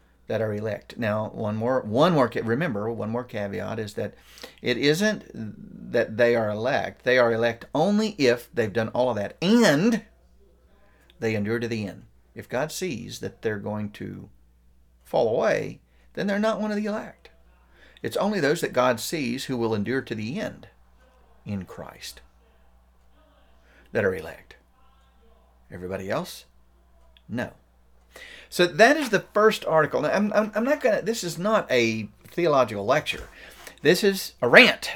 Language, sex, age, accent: English, male, 50-69, American